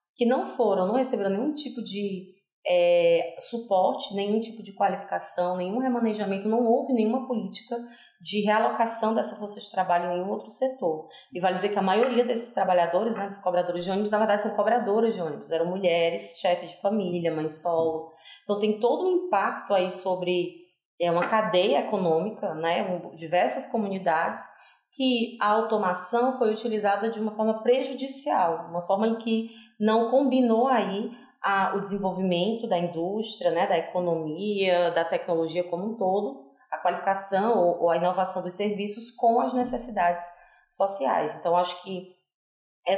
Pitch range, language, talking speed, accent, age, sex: 175-230 Hz, Portuguese, 160 wpm, Brazilian, 30-49, female